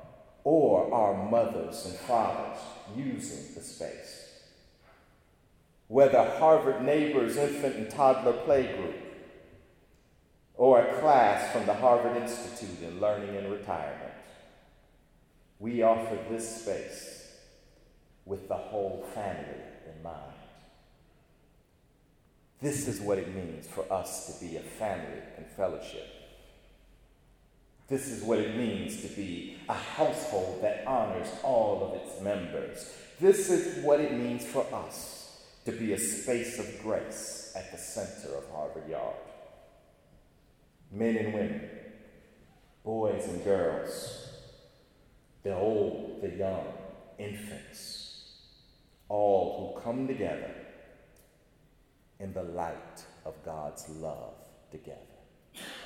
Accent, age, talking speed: American, 50-69, 115 wpm